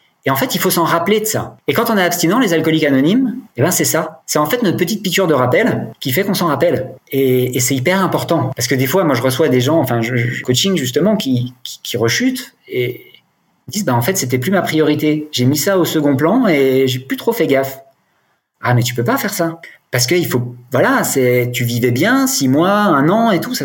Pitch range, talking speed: 120-160 Hz, 255 wpm